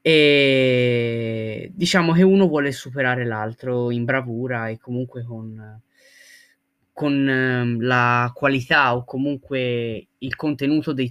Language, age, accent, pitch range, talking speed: Italian, 20-39, native, 120-145 Hz, 105 wpm